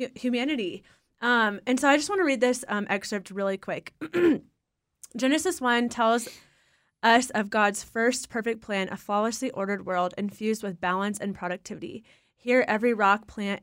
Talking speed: 160 wpm